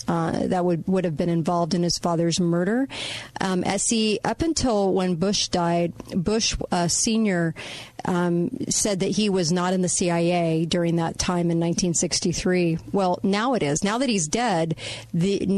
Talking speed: 175 wpm